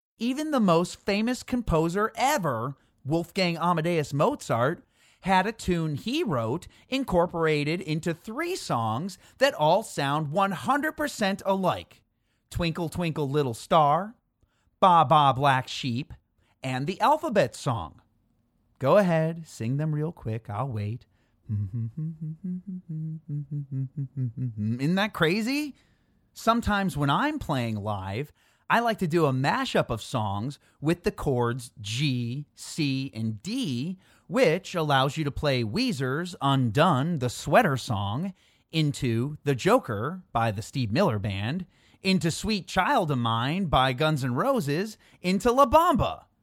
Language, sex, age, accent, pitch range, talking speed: English, male, 30-49, American, 130-200 Hz, 125 wpm